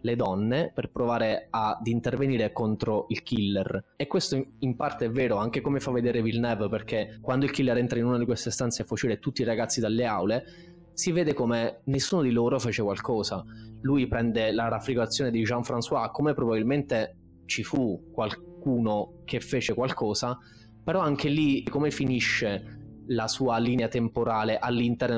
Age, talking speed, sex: 20-39, 165 wpm, male